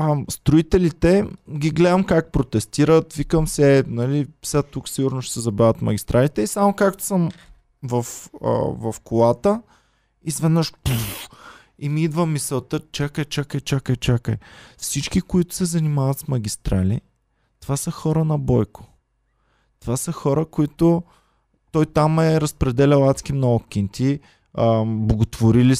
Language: Bulgarian